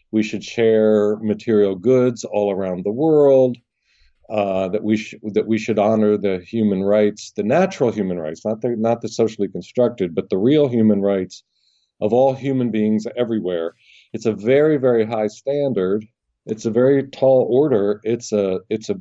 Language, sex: English, male